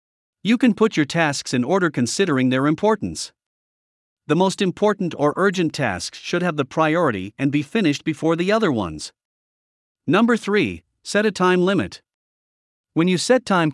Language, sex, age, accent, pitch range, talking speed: English, male, 50-69, American, 125-190 Hz, 160 wpm